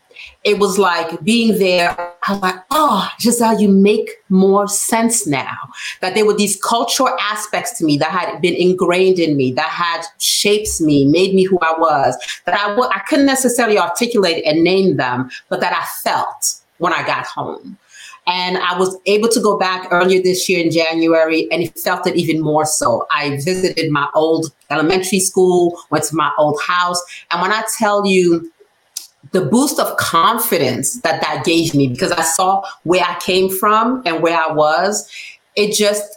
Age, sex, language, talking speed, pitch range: 40-59, female, English, 180 wpm, 165-205 Hz